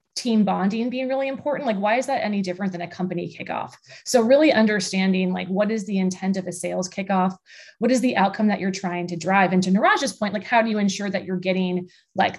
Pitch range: 180-225 Hz